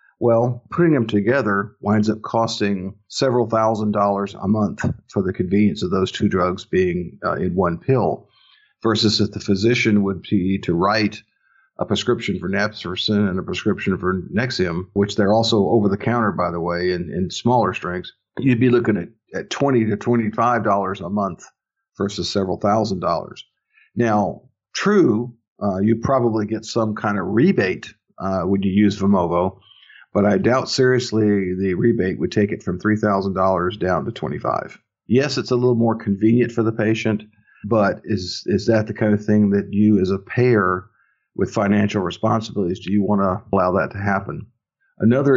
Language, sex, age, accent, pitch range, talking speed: English, male, 50-69, American, 100-115 Hz, 170 wpm